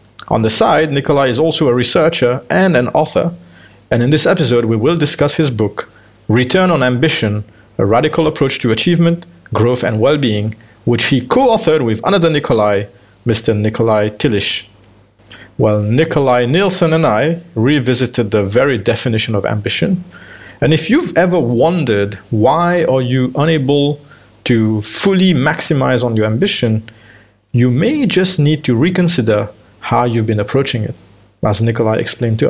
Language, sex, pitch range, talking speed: English, male, 105-145 Hz, 150 wpm